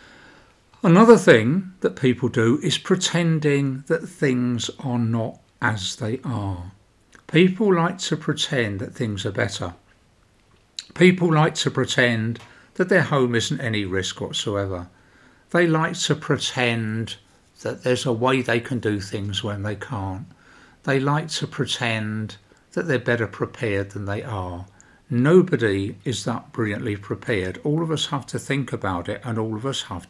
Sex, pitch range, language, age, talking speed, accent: male, 100-140 Hz, English, 50-69, 155 wpm, British